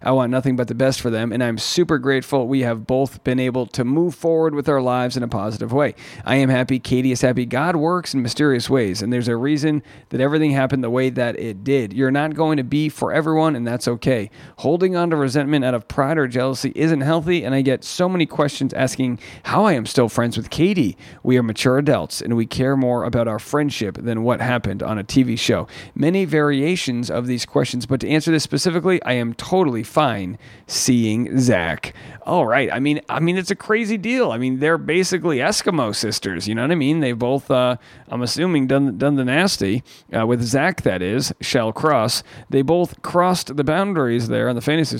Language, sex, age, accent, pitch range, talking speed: English, male, 40-59, American, 120-150 Hz, 220 wpm